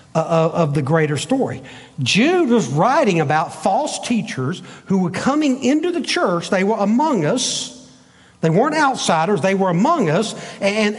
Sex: male